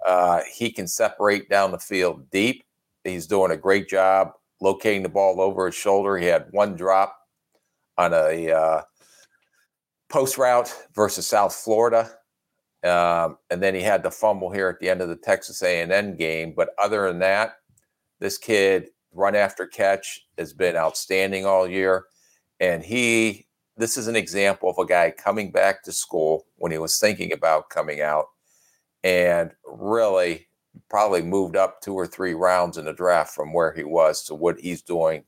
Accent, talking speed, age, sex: American, 175 wpm, 50-69, male